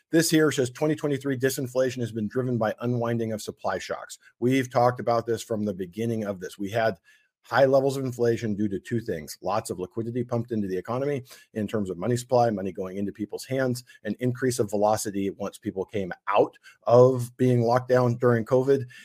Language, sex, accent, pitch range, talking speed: English, male, American, 110-130 Hz, 200 wpm